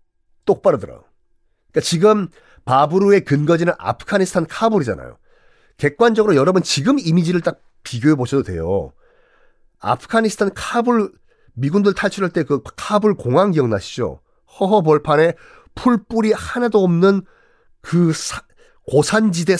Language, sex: Korean, male